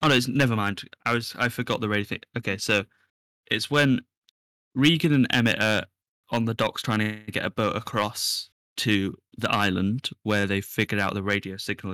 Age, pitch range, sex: 10-29, 100-115 Hz, male